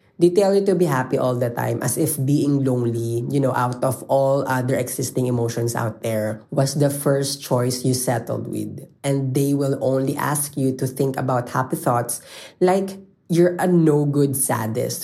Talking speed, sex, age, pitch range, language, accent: 185 wpm, female, 20-39, 125-155 Hz, Filipino, native